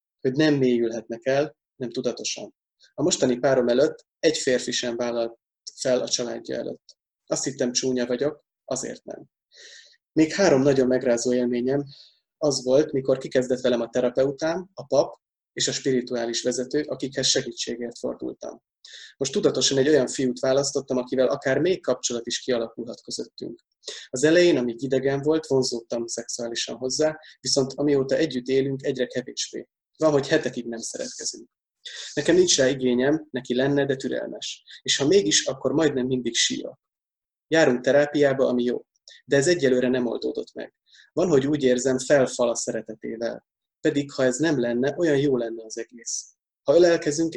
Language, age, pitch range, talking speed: Hungarian, 20-39, 125-145 Hz, 155 wpm